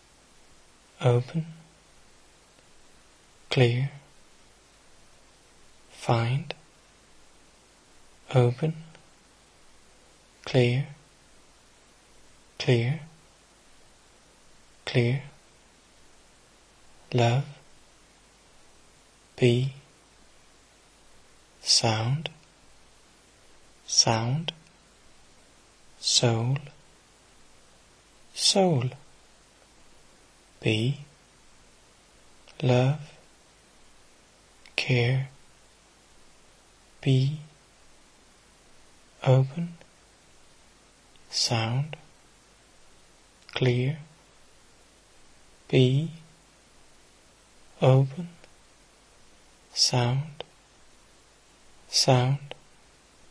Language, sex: Danish, male